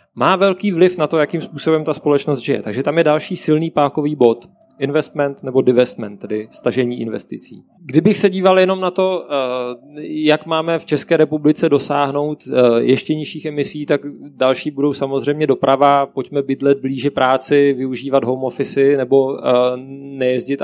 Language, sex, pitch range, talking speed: Czech, male, 125-150 Hz, 150 wpm